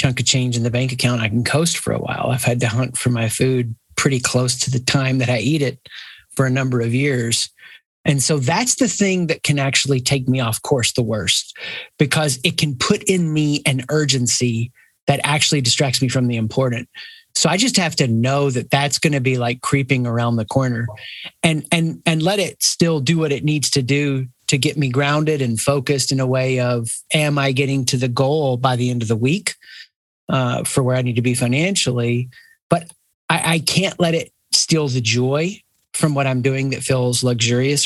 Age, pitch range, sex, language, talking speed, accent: 30-49, 125-150 Hz, male, English, 215 wpm, American